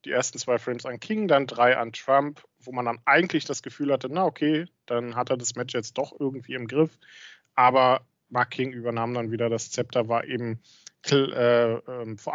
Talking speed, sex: 205 wpm, male